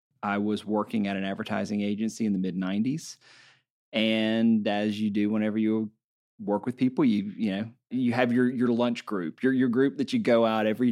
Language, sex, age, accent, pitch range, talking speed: English, male, 40-59, American, 100-125 Hz, 200 wpm